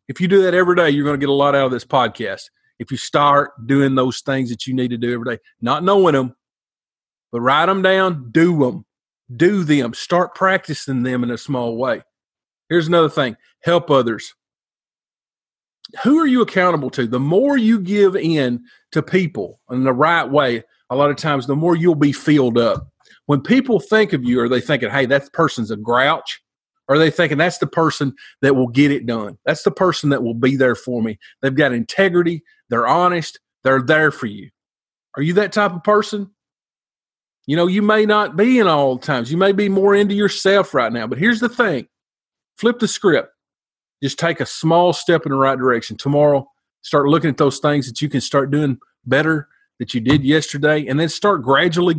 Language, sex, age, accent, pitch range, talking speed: English, male, 40-59, American, 135-185 Hz, 210 wpm